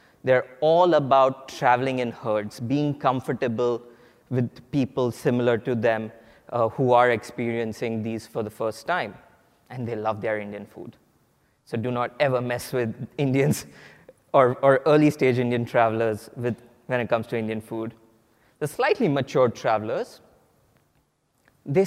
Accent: Indian